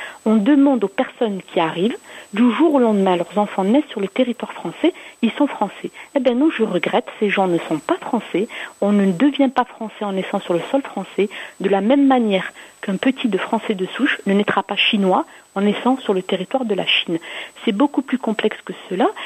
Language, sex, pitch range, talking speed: French, female, 200-265 Hz, 220 wpm